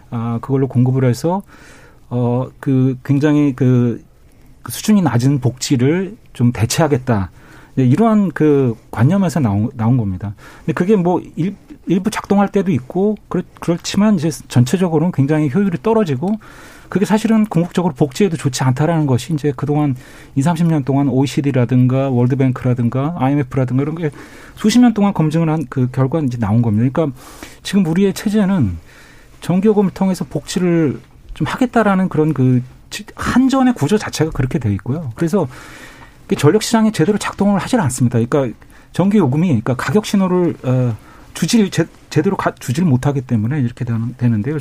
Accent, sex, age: native, male, 40-59